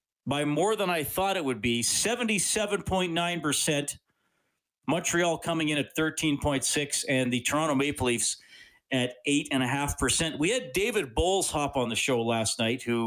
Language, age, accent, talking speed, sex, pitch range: English, 40-59, American, 145 wpm, male, 110-145 Hz